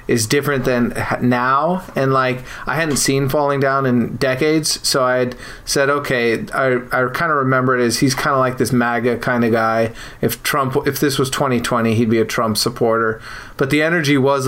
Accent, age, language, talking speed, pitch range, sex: American, 30-49, English, 205 wpm, 120-135 Hz, male